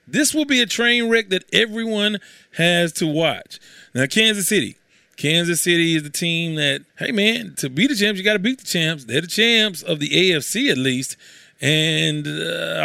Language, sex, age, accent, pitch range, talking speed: English, male, 30-49, American, 140-205 Hz, 195 wpm